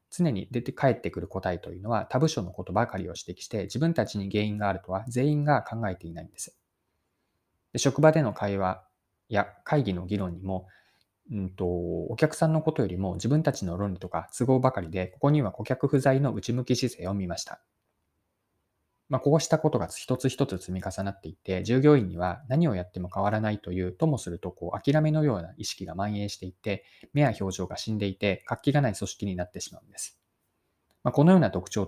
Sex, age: male, 20-39